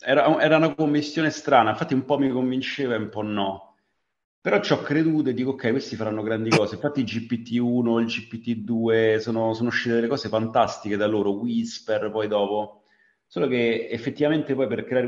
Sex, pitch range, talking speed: male, 105-125 Hz, 185 wpm